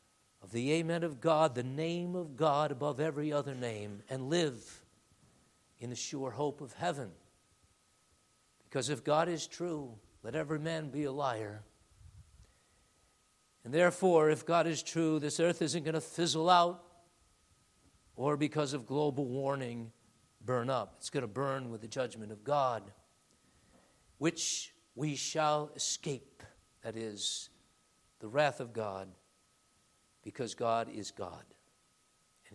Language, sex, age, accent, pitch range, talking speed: English, male, 50-69, American, 115-160 Hz, 140 wpm